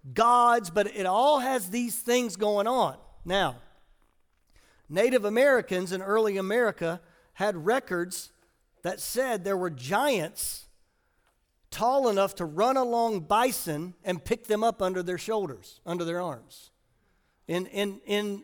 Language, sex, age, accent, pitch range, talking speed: English, male, 50-69, American, 175-225 Hz, 135 wpm